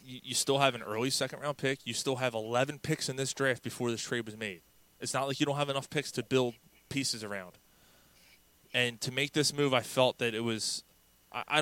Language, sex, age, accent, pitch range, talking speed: English, male, 20-39, American, 110-135 Hz, 220 wpm